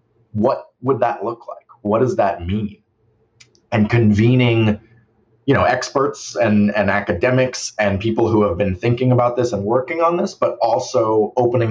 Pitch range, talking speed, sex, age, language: 95-115 Hz, 165 wpm, male, 30-49, English